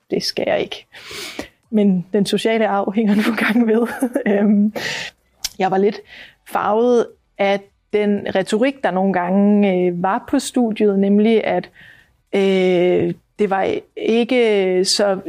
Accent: native